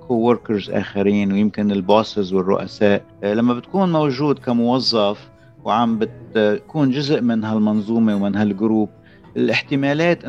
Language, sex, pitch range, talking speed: English, male, 105-125 Hz, 100 wpm